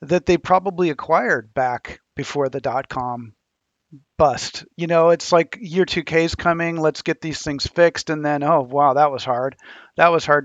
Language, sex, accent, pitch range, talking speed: English, male, American, 140-165 Hz, 185 wpm